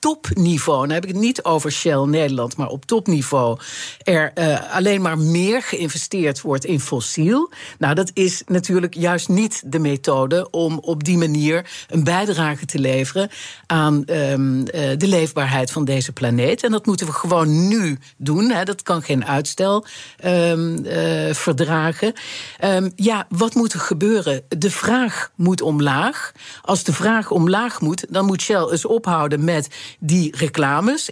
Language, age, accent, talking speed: Dutch, 50-69, Dutch, 150 wpm